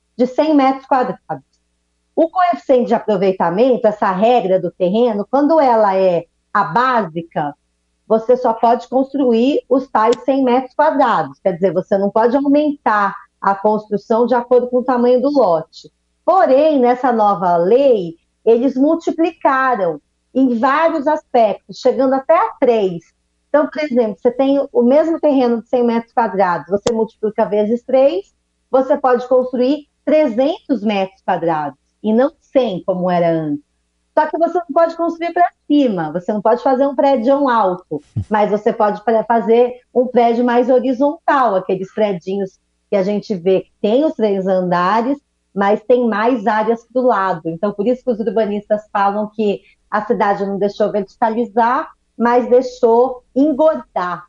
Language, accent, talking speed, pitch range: Portuguese, Brazilian, 155 wpm, 200-265 Hz